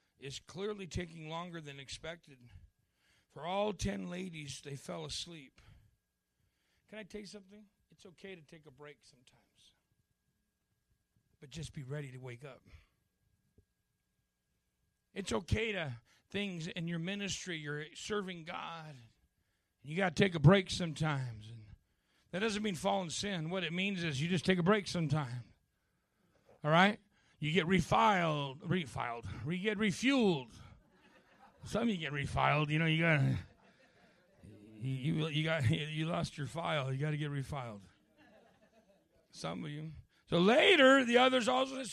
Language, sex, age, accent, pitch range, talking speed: English, male, 40-59, American, 130-185 Hz, 150 wpm